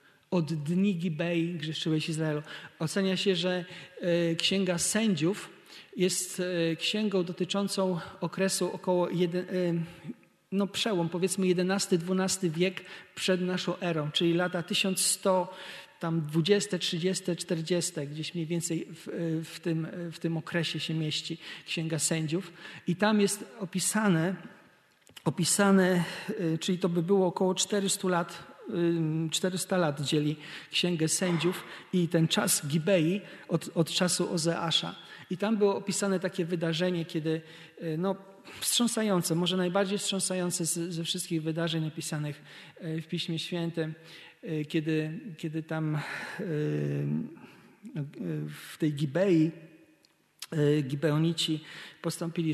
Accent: native